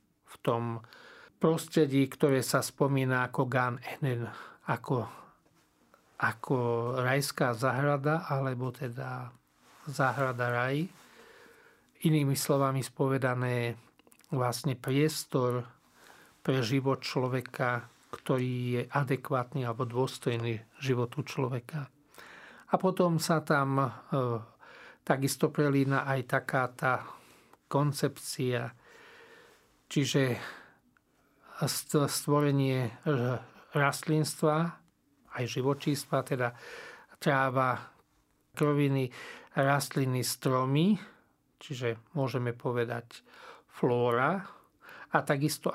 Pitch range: 125-145 Hz